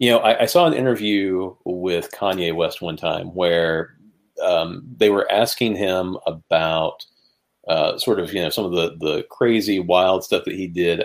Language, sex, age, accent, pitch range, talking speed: English, male, 40-59, American, 85-125 Hz, 185 wpm